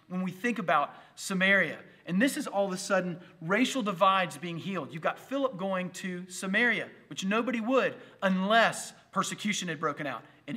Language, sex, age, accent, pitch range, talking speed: English, male, 30-49, American, 175-245 Hz, 175 wpm